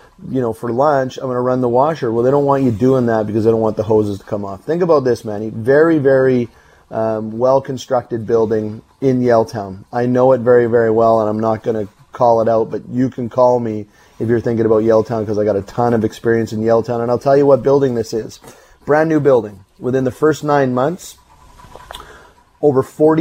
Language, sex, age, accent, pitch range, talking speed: English, male, 30-49, American, 115-135 Hz, 225 wpm